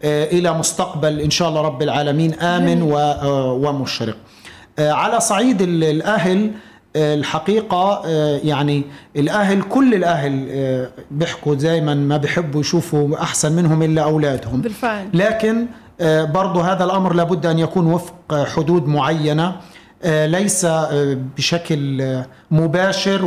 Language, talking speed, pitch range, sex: Arabic, 100 wpm, 150-185 Hz, male